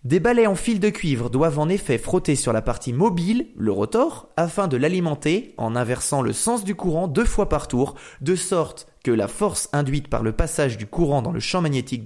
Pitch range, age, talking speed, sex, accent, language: 125-185 Hz, 20-39, 220 wpm, male, French, French